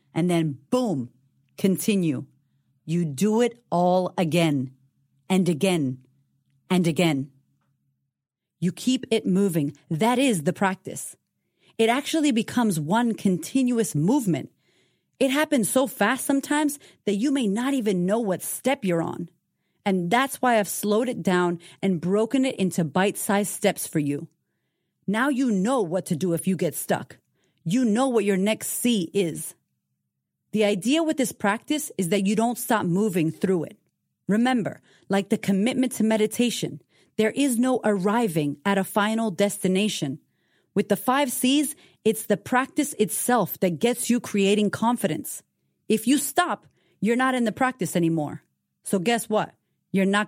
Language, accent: English, American